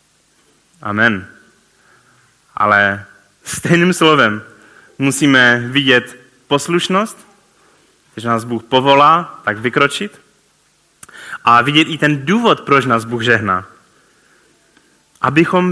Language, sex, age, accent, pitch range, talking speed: Czech, male, 20-39, native, 120-175 Hz, 90 wpm